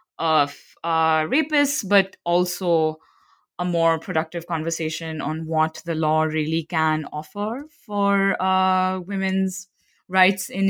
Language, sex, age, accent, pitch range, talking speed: English, female, 20-39, Indian, 165-200 Hz, 120 wpm